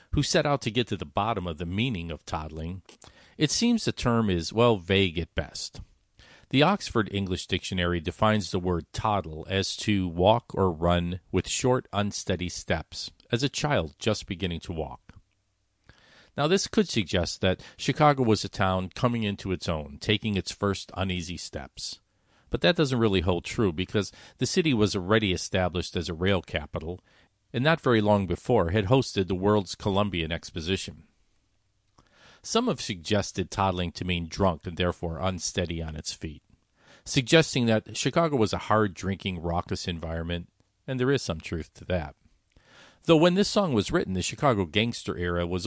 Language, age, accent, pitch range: English, 50-69, American, 90-110 Hz